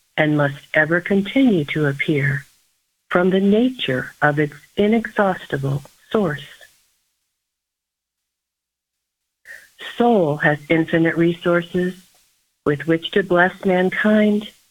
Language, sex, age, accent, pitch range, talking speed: English, female, 50-69, American, 145-200 Hz, 90 wpm